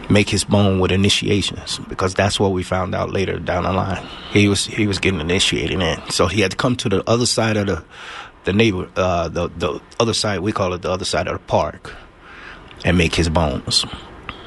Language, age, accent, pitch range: English, 30-49, American, 90-105 Hz